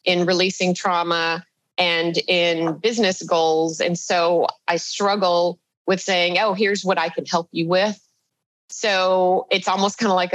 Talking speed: 155 wpm